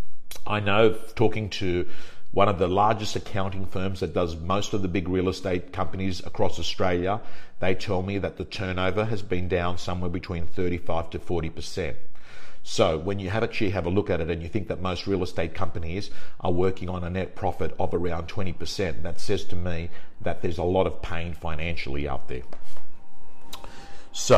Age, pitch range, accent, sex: 50-69, 85-100 Hz, Australian, male